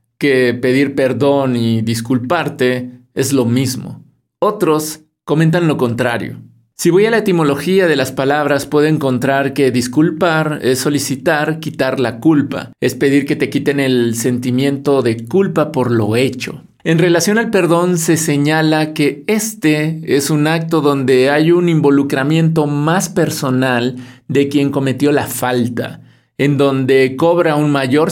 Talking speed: 145 wpm